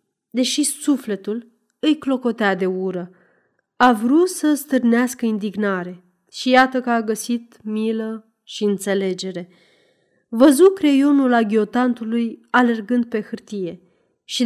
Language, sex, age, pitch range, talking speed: Romanian, female, 30-49, 195-255 Hz, 110 wpm